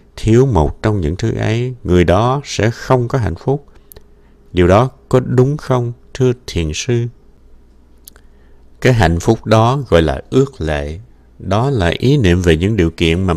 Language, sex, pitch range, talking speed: Vietnamese, male, 75-115 Hz, 170 wpm